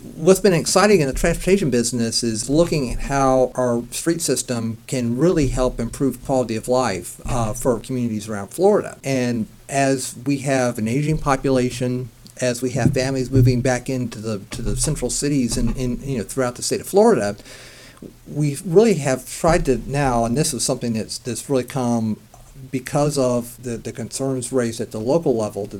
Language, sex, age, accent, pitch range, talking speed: English, male, 50-69, American, 120-140 Hz, 185 wpm